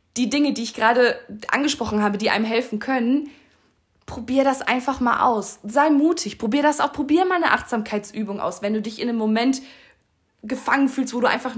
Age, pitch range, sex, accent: 20-39, 215-280 Hz, female, German